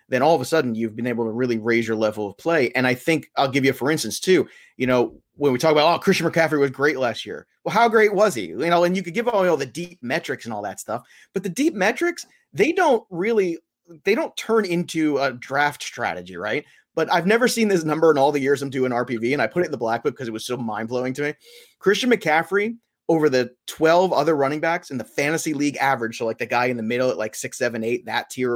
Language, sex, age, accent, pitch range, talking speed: English, male, 30-49, American, 130-185 Hz, 265 wpm